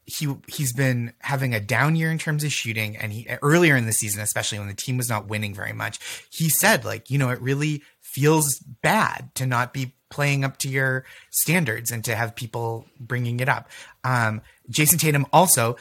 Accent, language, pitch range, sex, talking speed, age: American, English, 115-150 Hz, male, 205 wpm, 30-49